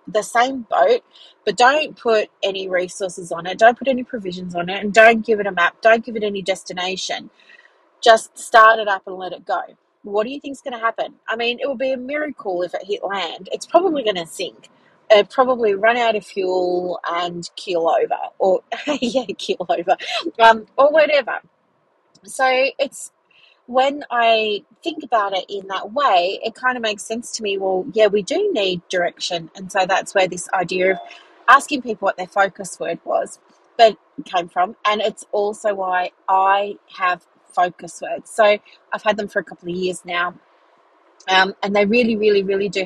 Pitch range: 190-260 Hz